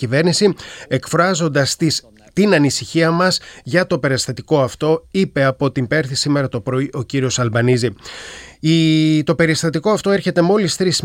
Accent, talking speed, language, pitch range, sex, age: native, 140 wpm, Greek, 130-175 Hz, male, 30-49